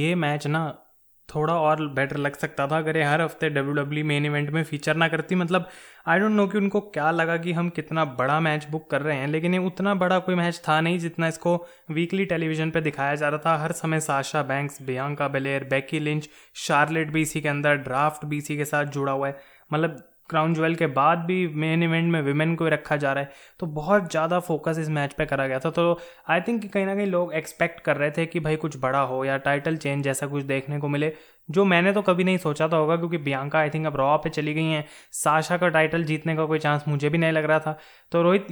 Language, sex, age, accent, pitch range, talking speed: Hindi, male, 20-39, native, 150-175 Hz, 240 wpm